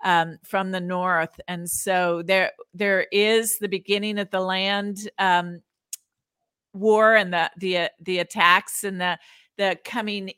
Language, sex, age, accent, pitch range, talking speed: English, female, 50-69, American, 185-220 Hz, 145 wpm